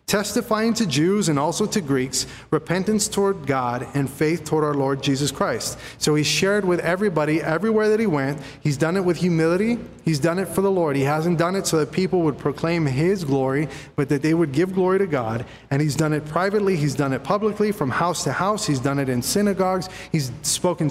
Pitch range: 140-180 Hz